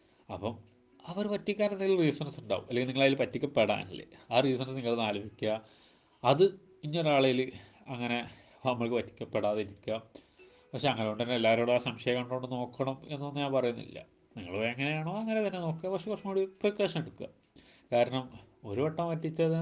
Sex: male